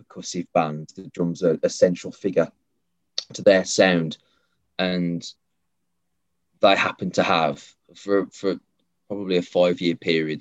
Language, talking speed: English, 125 wpm